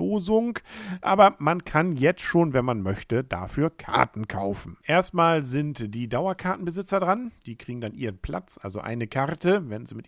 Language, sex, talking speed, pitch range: German, male, 160 wpm, 115-165 Hz